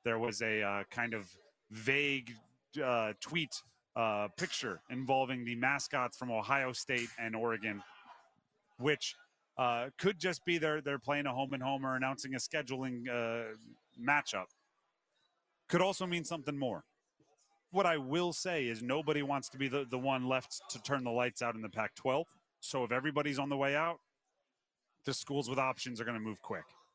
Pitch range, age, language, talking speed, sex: 115-140 Hz, 30-49, English, 175 wpm, male